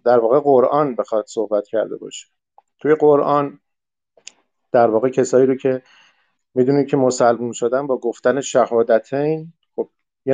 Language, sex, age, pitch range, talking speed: Persian, male, 50-69, 125-150 Hz, 135 wpm